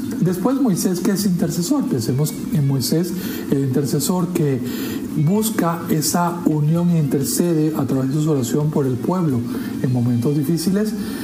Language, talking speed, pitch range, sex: Spanish, 145 wpm, 140-210 Hz, male